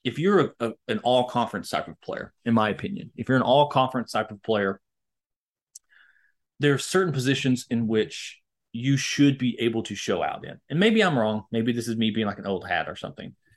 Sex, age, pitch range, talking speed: male, 30-49, 110-135 Hz, 205 wpm